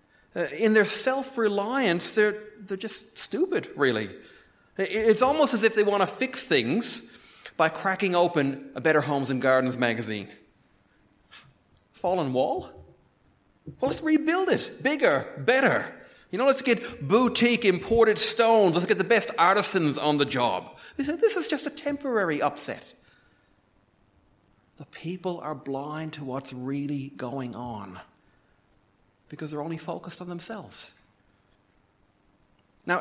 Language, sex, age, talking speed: English, male, 40-59, 135 wpm